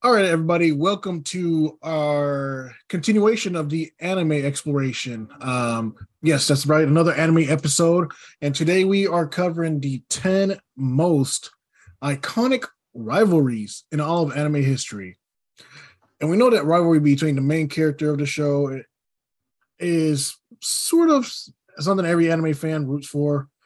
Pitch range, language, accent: 135-165 Hz, English, American